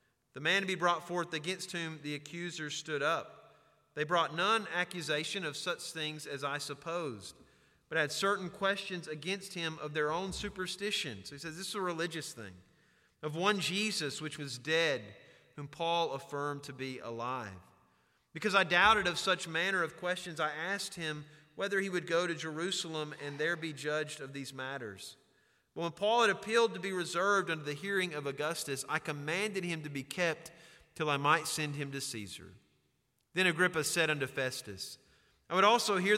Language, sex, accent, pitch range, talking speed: English, male, American, 150-190 Hz, 180 wpm